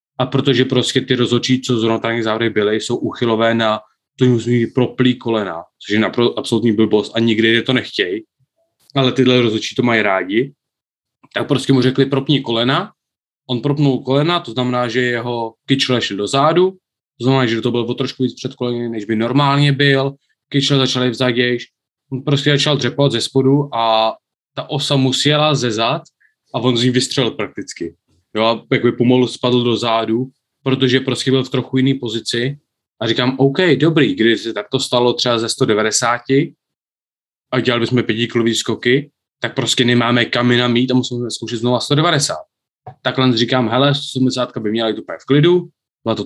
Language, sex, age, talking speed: Czech, male, 20-39, 170 wpm